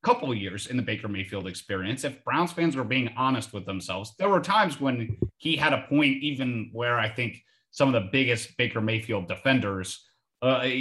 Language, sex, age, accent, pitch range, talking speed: English, male, 30-49, American, 115-165 Hz, 200 wpm